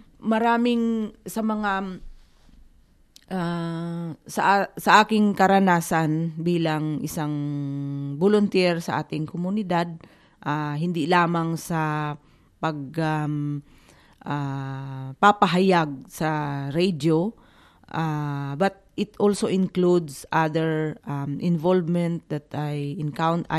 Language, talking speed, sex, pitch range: English, 90 wpm, female, 150-175 Hz